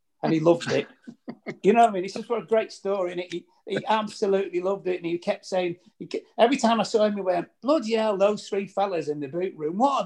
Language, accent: English, British